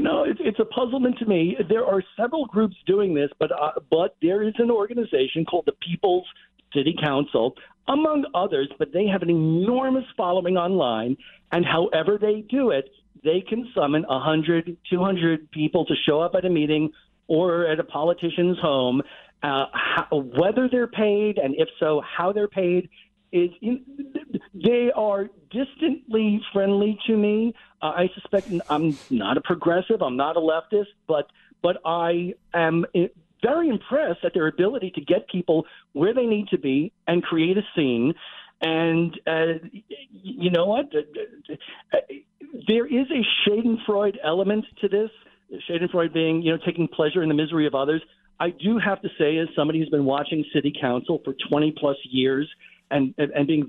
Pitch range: 160-215 Hz